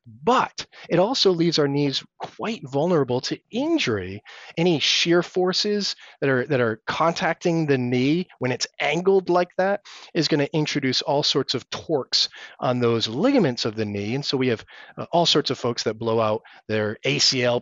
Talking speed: 175 wpm